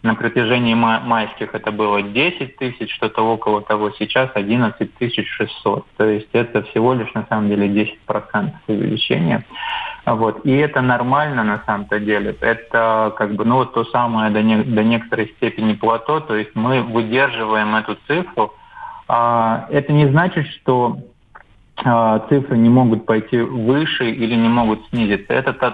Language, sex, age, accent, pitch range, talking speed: Russian, male, 20-39, native, 110-125 Hz, 155 wpm